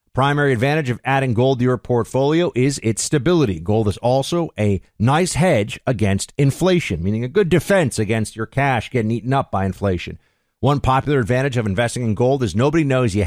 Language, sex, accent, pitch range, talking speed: English, male, American, 110-150 Hz, 195 wpm